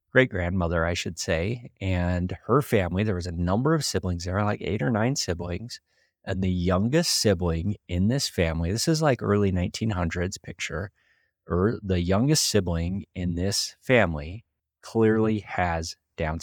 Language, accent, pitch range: English, American, 90-110 Hz